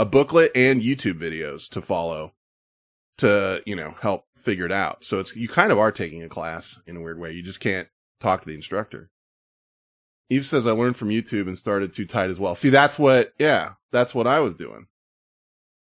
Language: English